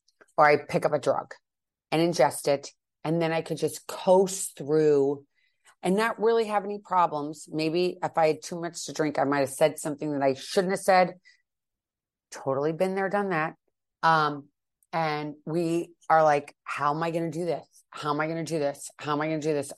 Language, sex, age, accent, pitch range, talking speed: English, female, 30-49, American, 140-180 Hz, 210 wpm